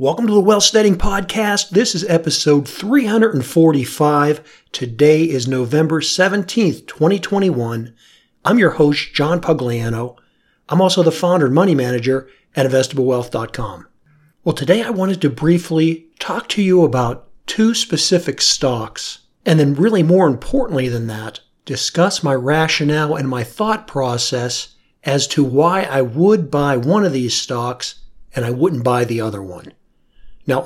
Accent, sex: American, male